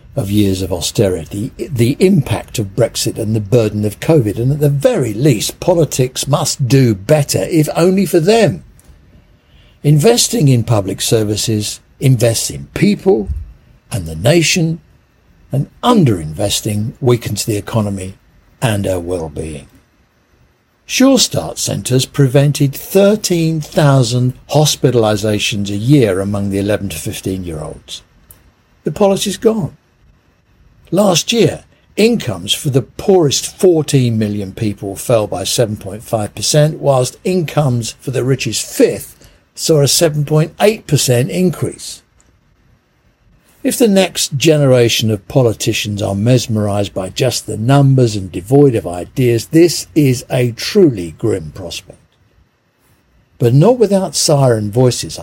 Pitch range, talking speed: 105-150 Hz, 120 wpm